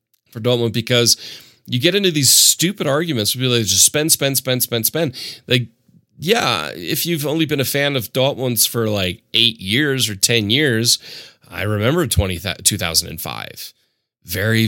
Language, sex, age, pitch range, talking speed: English, male, 30-49, 105-130 Hz, 150 wpm